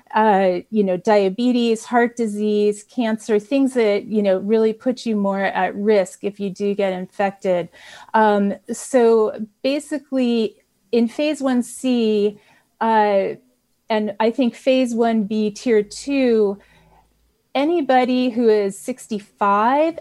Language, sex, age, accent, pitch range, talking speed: English, female, 30-49, American, 195-230 Hz, 120 wpm